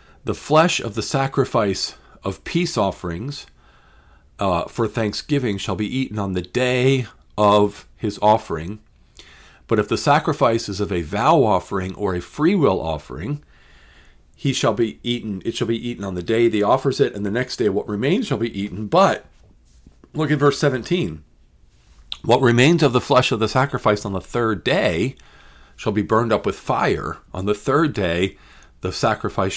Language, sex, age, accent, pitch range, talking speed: English, male, 50-69, American, 90-125 Hz, 165 wpm